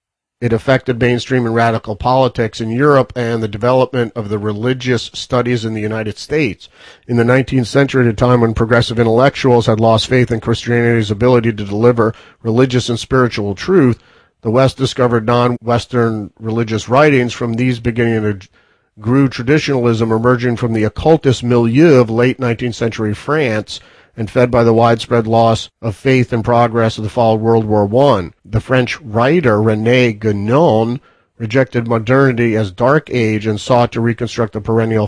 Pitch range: 115-130 Hz